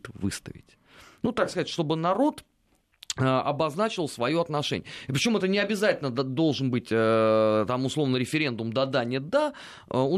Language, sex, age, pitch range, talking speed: Russian, male, 30-49, 130-180 Hz, 135 wpm